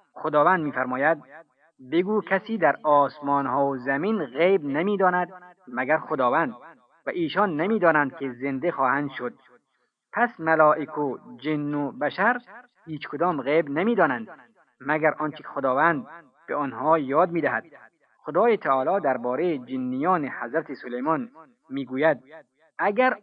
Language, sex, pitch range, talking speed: Persian, male, 140-185 Hz, 115 wpm